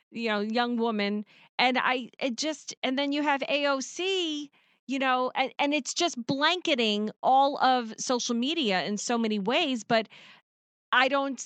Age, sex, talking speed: 40-59, female, 160 wpm